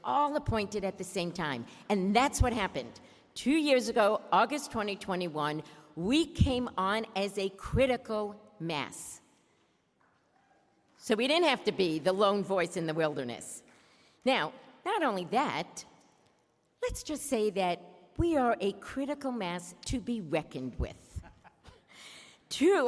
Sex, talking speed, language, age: female, 135 wpm, English, 50-69